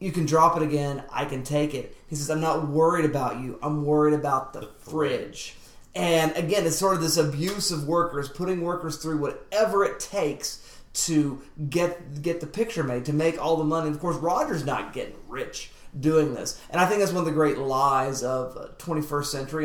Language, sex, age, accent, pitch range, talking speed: English, male, 30-49, American, 140-165 Hz, 210 wpm